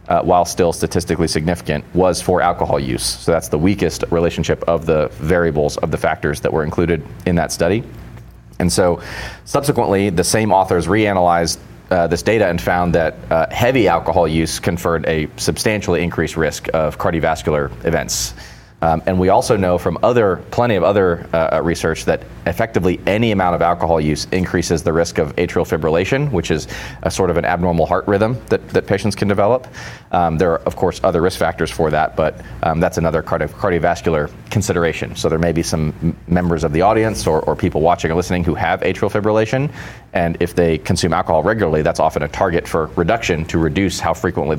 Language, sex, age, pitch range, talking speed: English, male, 30-49, 80-95 Hz, 190 wpm